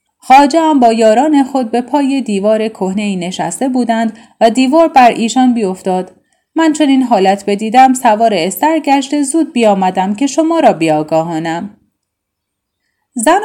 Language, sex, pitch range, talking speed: Persian, female, 220-300 Hz, 140 wpm